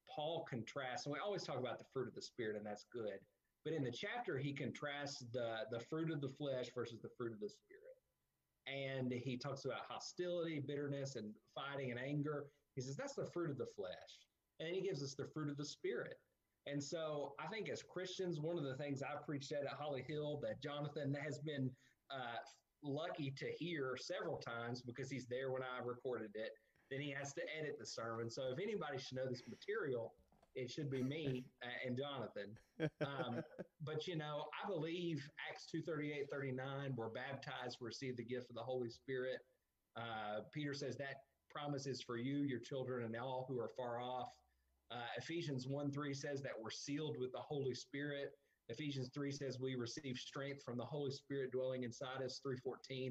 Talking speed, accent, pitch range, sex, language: 200 wpm, American, 125-150 Hz, male, English